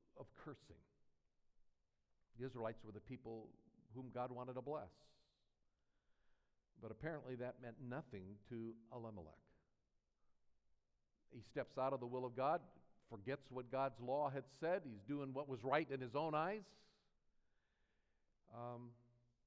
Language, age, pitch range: English, 50-69, 105-145 Hz